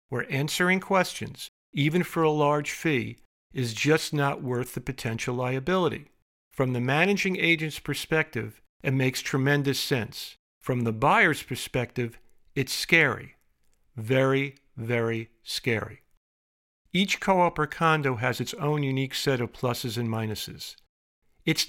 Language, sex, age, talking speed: English, male, 50-69, 130 wpm